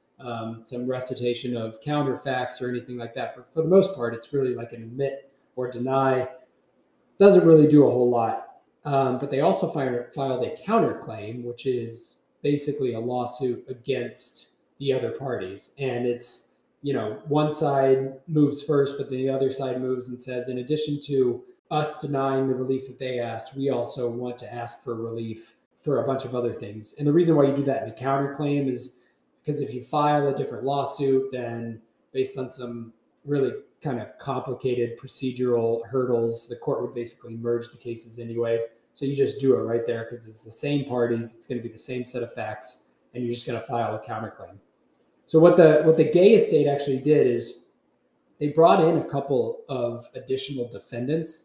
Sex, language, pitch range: male, English, 120-140 Hz